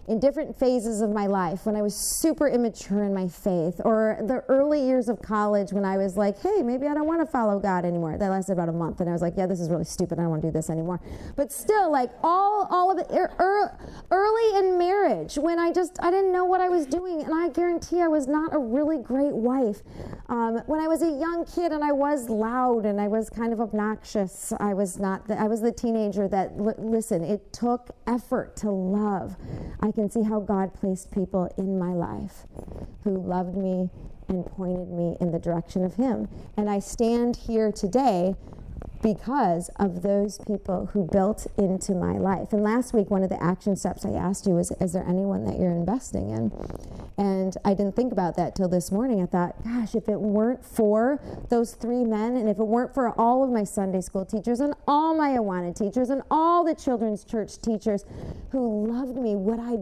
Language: English